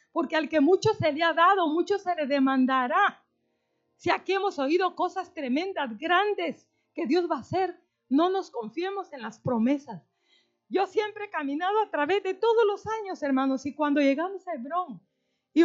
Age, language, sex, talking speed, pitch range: 40-59, Spanish, female, 180 wpm, 245-350 Hz